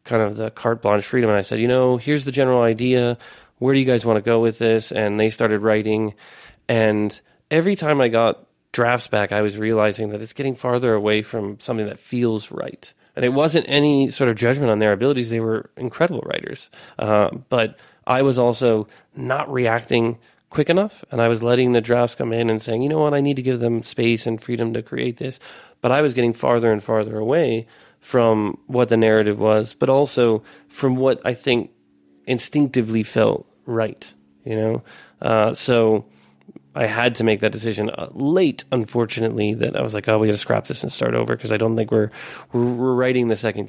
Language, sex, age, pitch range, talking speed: English, male, 30-49, 110-125 Hz, 210 wpm